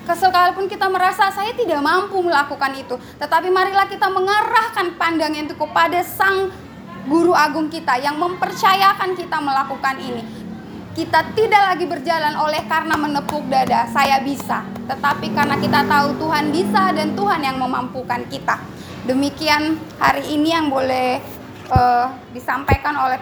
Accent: native